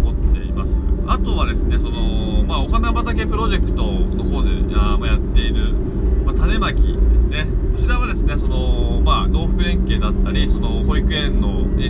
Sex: male